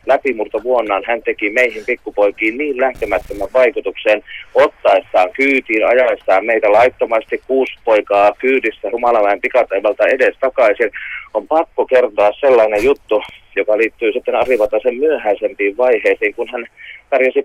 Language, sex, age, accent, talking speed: Finnish, male, 30-49, native, 115 wpm